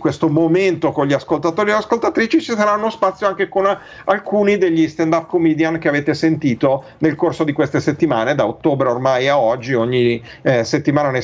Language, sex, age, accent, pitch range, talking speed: Italian, male, 50-69, native, 135-170 Hz, 175 wpm